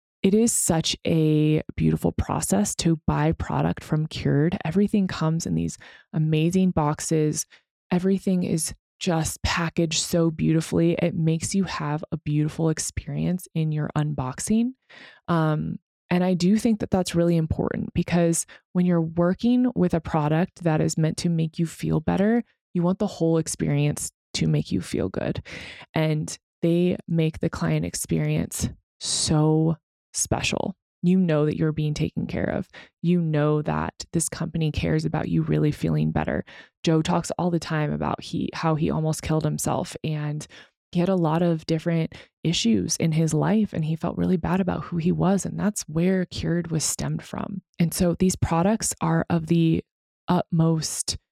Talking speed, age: 165 wpm, 20-39